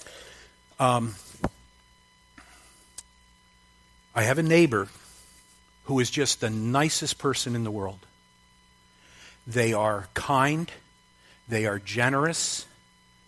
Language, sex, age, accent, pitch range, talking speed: English, male, 50-69, American, 90-150 Hz, 90 wpm